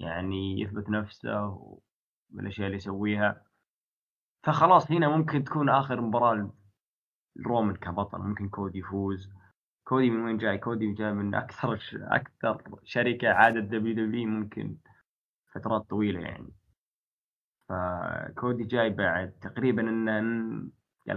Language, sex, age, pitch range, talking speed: Arabic, male, 20-39, 100-120 Hz, 120 wpm